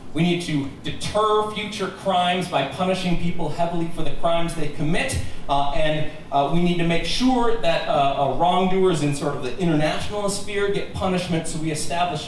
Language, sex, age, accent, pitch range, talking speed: English, male, 40-59, American, 145-190 Hz, 185 wpm